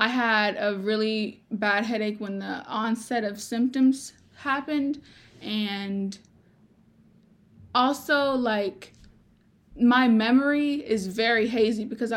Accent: American